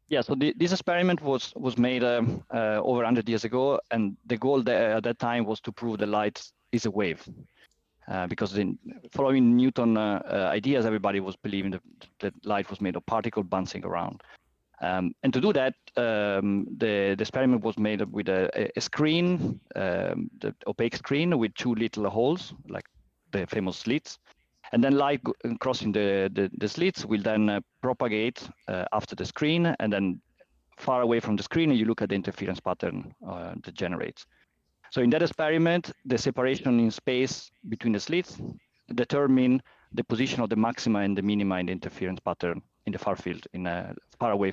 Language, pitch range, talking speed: English, 100-130 Hz, 190 wpm